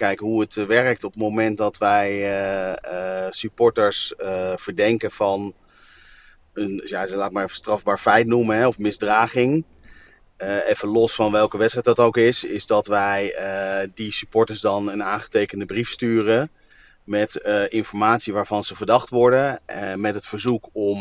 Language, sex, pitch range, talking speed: Dutch, male, 100-115 Hz, 170 wpm